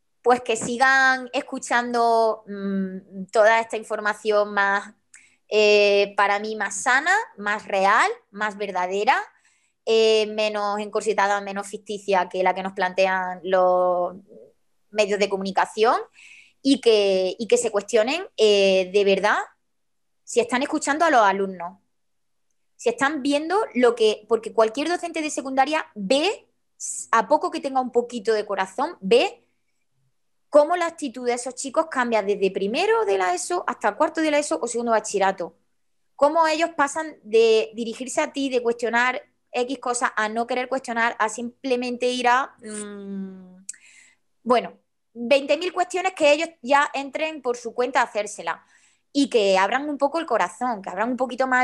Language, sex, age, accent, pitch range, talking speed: Spanish, female, 20-39, Spanish, 205-275 Hz, 150 wpm